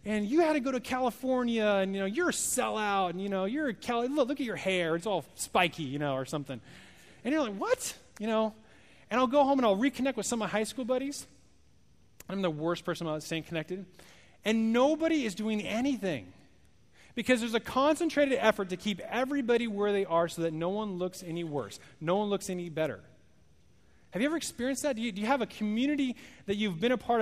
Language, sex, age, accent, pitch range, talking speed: English, male, 30-49, American, 165-240 Hz, 225 wpm